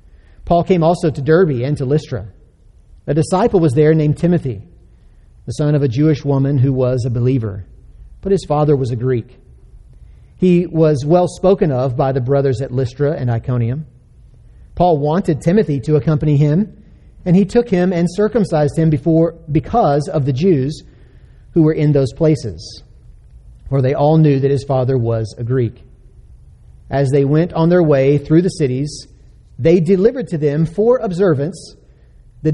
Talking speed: 170 wpm